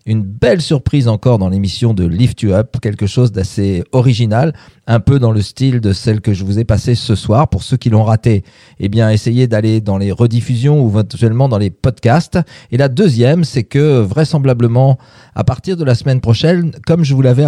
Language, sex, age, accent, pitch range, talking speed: French, male, 40-59, French, 110-135 Hz, 210 wpm